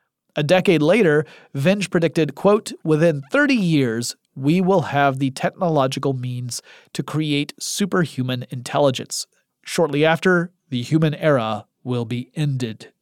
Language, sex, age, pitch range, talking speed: English, male, 30-49, 125-175 Hz, 125 wpm